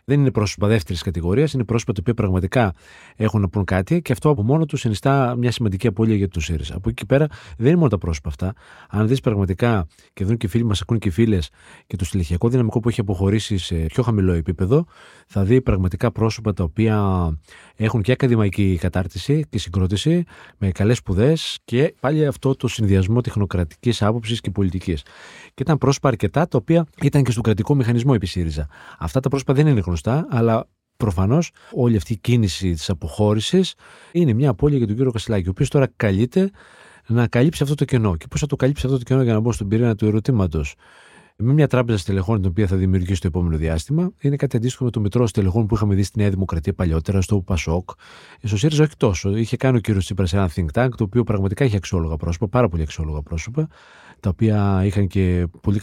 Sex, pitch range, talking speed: male, 95-130 Hz, 210 wpm